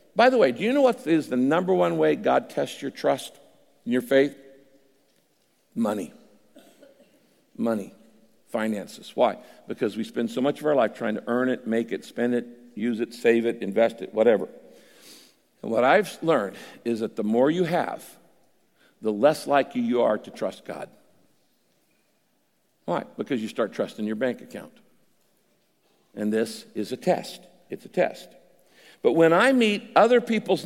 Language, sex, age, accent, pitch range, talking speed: English, male, 60-79, American, 120-180 Hz, 170 wpm